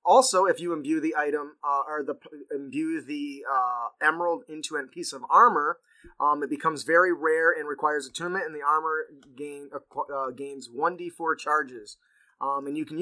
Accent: American